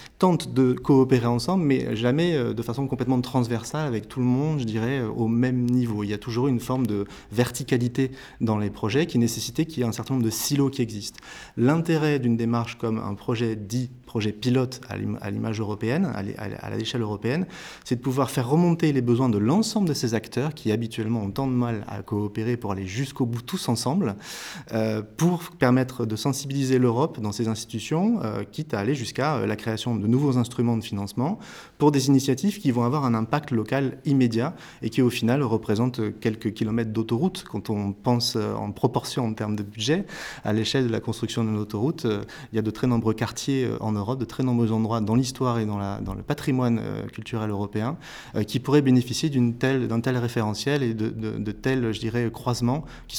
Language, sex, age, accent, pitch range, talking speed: French, male, 30-49, French, 110-135 Hz, 200 wpm